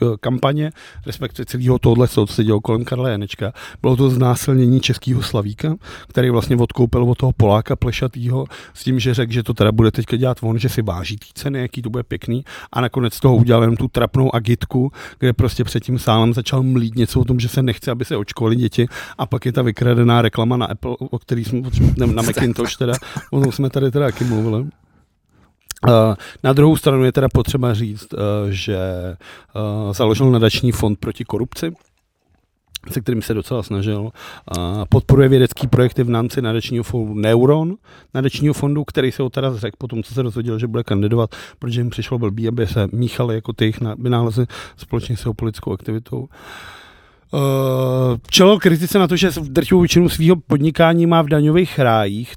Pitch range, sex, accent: 110-130 Hz, male, native